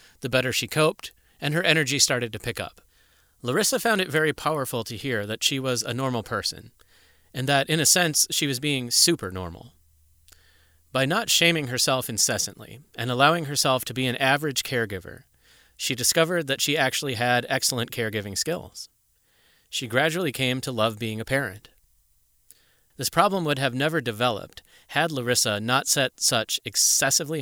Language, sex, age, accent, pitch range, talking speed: English, male, 30-49, American, 115-145 Hz, 165 wpm